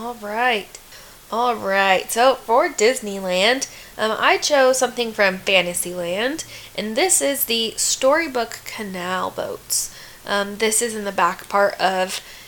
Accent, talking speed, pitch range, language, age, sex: American, 125 wpm, 185-235 Hz, English, 10-29, female